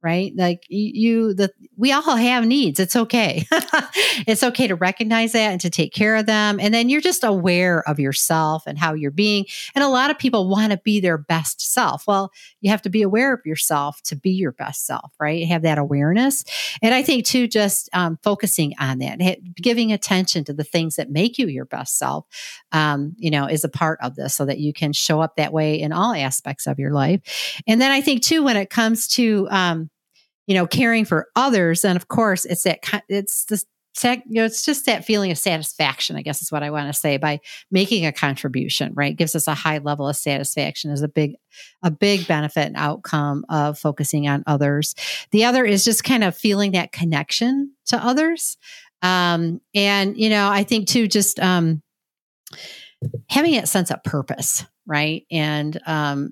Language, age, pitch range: English, 50-69, 150-220 Hz